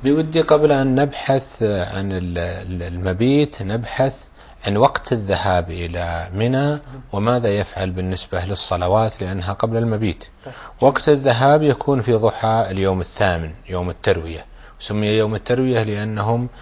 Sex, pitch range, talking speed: male, 95-125 Hz, 115 wpm